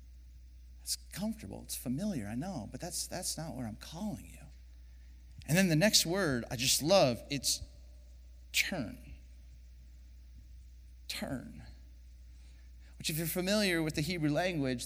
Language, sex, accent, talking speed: English, male, American, 135 wpm